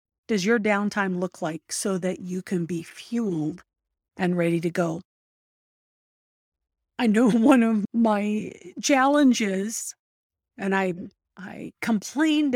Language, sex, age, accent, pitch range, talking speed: English, female, 50-69, American, 190-240 Hz, 120 wpm